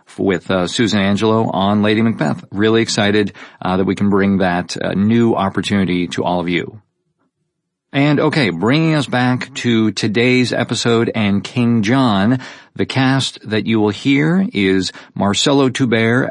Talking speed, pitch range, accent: 155 wpm, 95-125 Hz, American